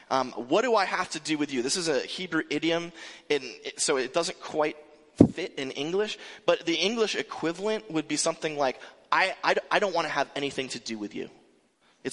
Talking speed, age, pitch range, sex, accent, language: 225 wpm, 30-49, 145-215 Hz, male, American, English